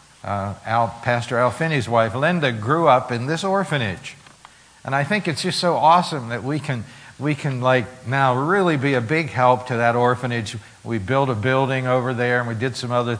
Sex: male